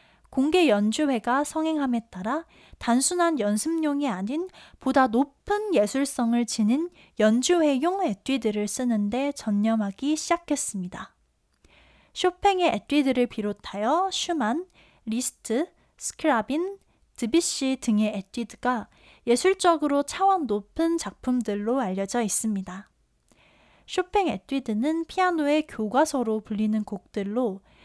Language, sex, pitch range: Korean, female, 220-330 Hz